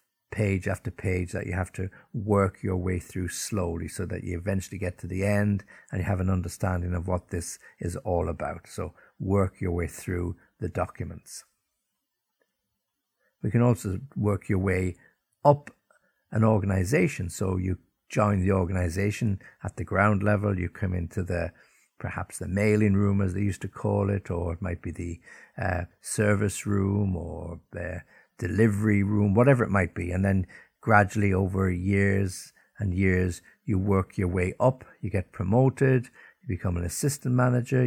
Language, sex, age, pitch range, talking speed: English, male, 60-79, 90-105 Hz, 170 wpm